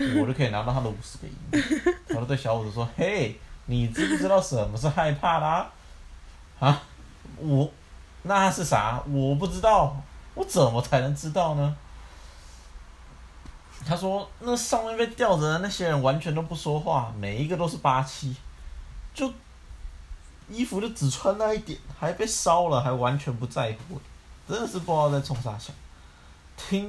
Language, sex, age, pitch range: Chinese, male, 30-49, 105-160 Hz